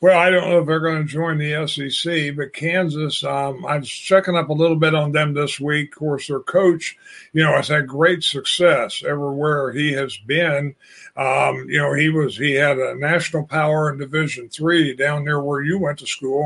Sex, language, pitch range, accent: male, English, 145-165 Hz, American